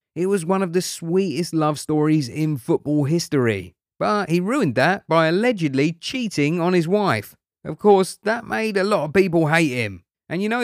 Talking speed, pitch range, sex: 190 wpm, 125-185 Hz, male